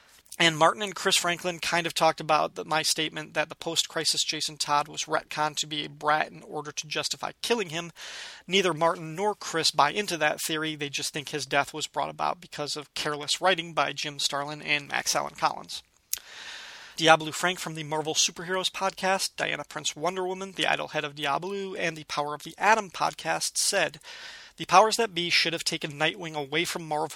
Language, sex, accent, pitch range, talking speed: English, male, American, 150-175 Hz, 200 wpm